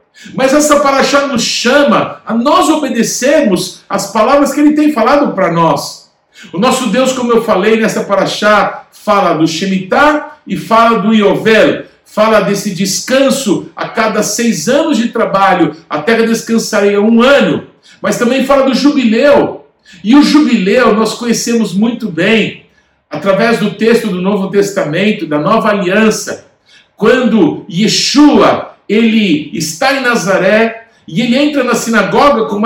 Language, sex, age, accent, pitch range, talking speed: Portuguese, male, 60-79, Brazilian, 205-260 Hz, 145 wpm